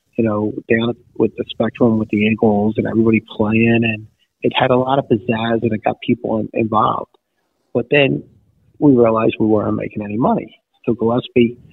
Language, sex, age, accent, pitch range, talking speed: English, male, 30-49, American, 105-115 Hz, 180 wpm